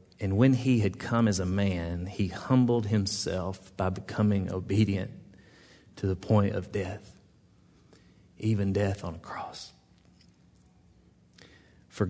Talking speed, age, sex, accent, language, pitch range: 125 wpm, 40-59, male, American, English, 95-105 Hz